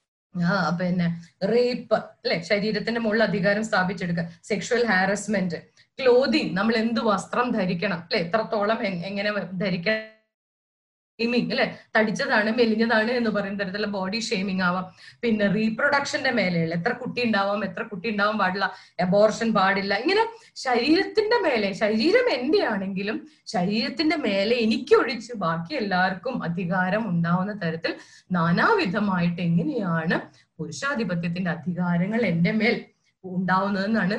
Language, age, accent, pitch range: Malayalam, 30-49, native, 185-245 Hz